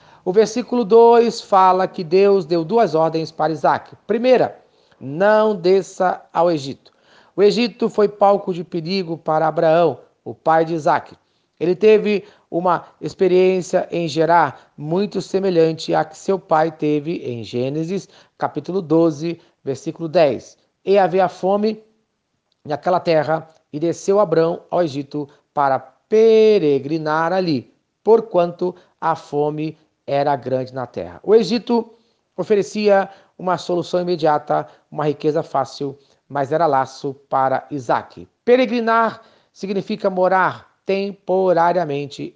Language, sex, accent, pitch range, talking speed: Portuguese, male, Brazilian, 155-195 Hz, 120 wpm